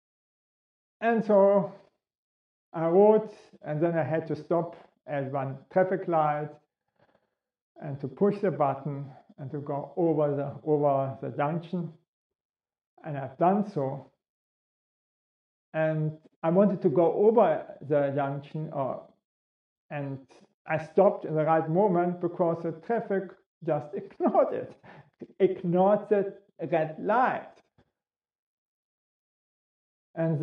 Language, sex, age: English, male, 50-69